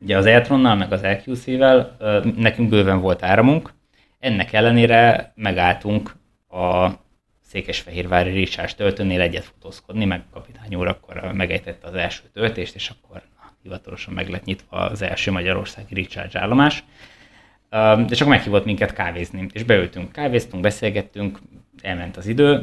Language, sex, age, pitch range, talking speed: Hungarian, male, 20-39, 95-110 Hz, 130 wpm